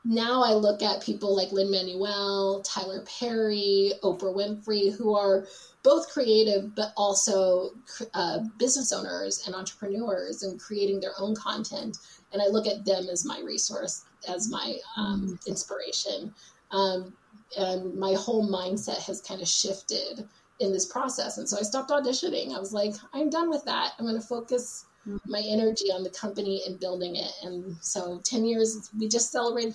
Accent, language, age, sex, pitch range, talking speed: American, English, 30-49, female, 195-225 Hz, 165 wpm